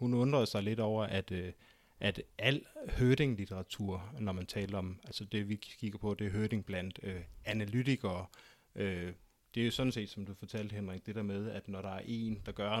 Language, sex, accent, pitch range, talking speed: Danish, male, native, 100-115 Hz, 210 wpm